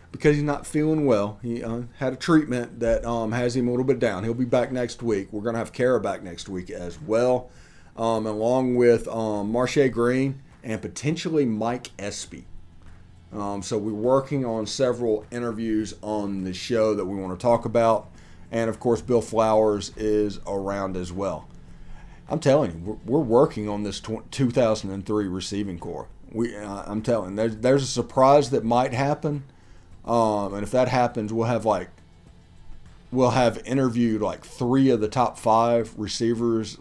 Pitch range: 100-125 Hz